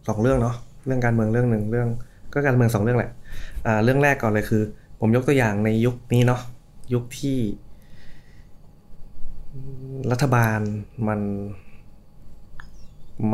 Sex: male